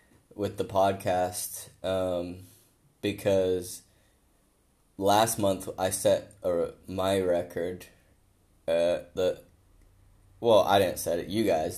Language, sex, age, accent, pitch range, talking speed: English, male, 10-29, American, 90-105 Hz, 105 wpm